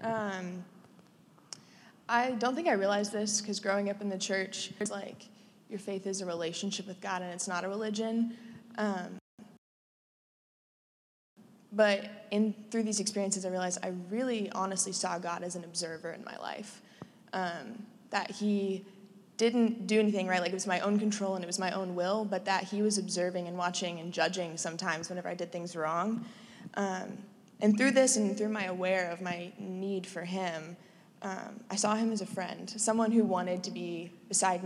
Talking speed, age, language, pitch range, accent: 185 wpm, 20-39, English, 185-210 Hz, American